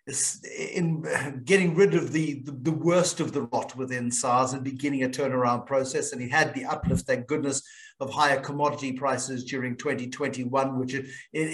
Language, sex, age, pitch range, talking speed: English, male, 50-69, 135-175 Hz, 165 wpm